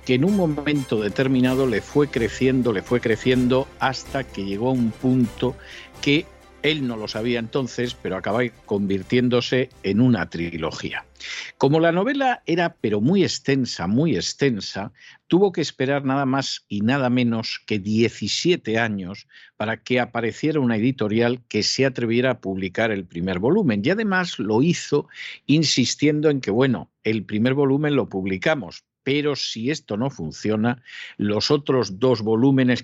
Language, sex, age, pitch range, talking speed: Spanish, male, 50-69, 110-140 Hz, 155 wpm